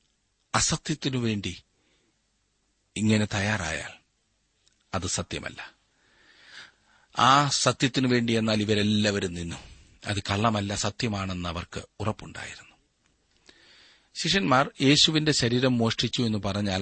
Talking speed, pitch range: 65 wpm, 95-125 Hz